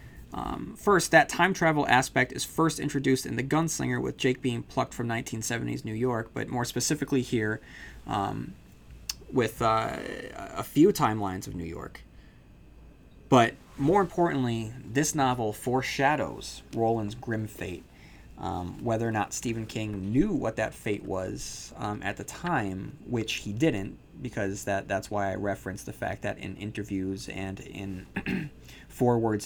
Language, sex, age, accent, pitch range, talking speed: English, male, 20-39, American, 100-125 Hz, 150 wpm